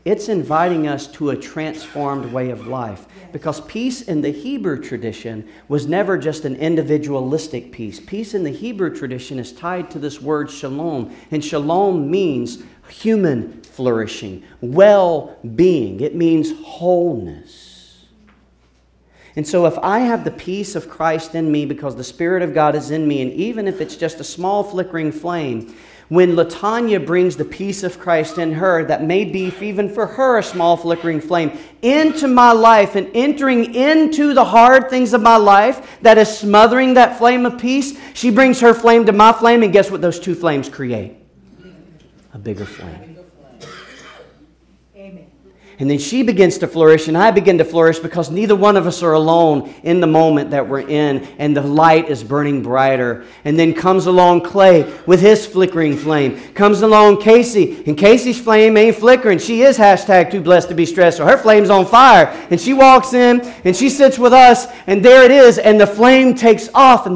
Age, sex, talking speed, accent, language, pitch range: 40-59, male, 180 wpm, American, English, 150-220 Hz